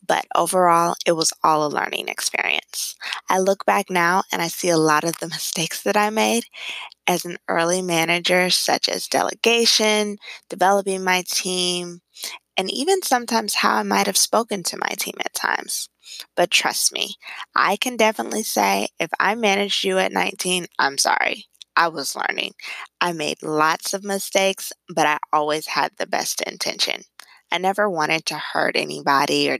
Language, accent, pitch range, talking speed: English, American, 165-205 Hz, 165 wpm